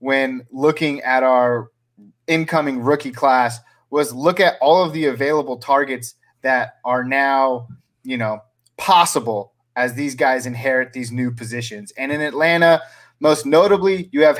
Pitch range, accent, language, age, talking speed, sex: 120-145 Hz, American, English, 30-49, 145 wpm, male